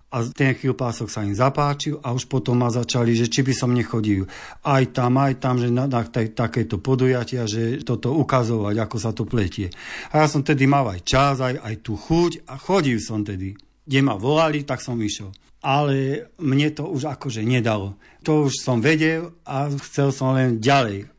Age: 50-69